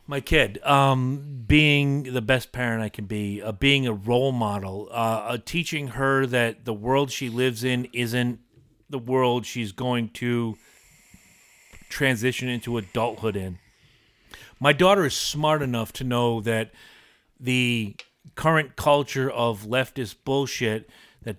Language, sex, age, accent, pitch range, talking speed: English, male, 40-59, American, 115-140 Hz, 140 wpm